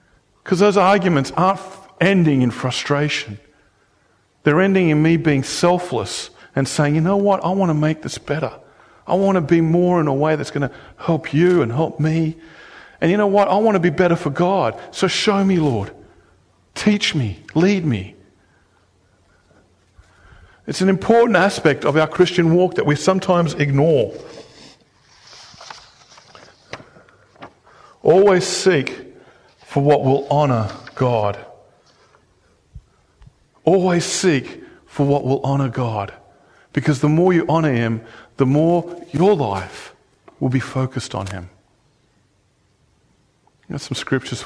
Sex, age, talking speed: male, 50-69, 140 wpm